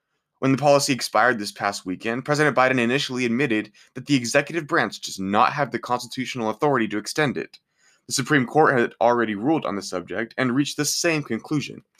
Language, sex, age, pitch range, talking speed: English, male, 20-39, 110-145 Hz, 190 wpm